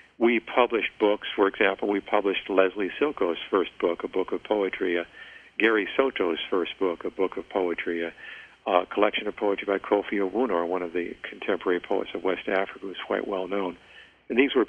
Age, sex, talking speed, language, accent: 50-69, male, 190 wpm, English, American